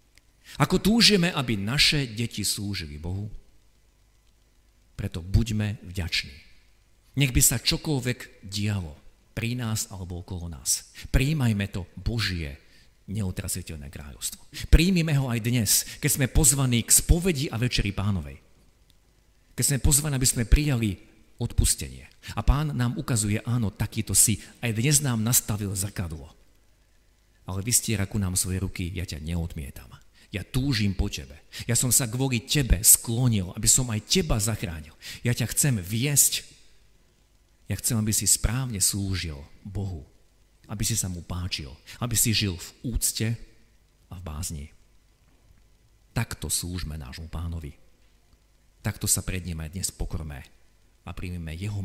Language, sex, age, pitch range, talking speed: Slovak, male, 50-69, 90-115 Hz, 135 wpm